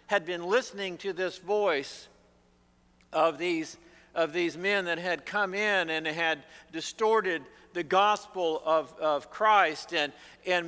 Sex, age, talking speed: male, 50-69, 135 wpm